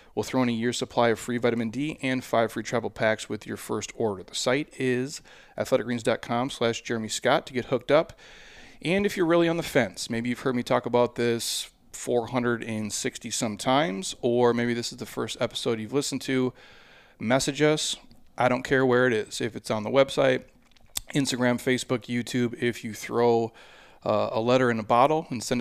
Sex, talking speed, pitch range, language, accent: male, 195 wpm, 115-130 Hz, English, American